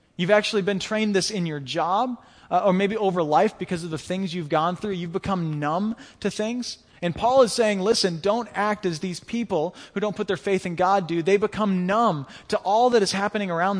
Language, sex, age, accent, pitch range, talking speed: English, male, 20-39, American, 165-205 Hz, 225 wpm